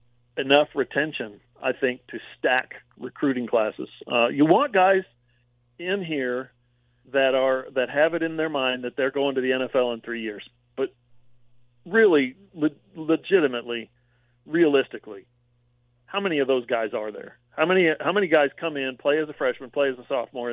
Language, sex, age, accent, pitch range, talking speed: English, male, 40-59, American, 120-155 Hz, 170 wpm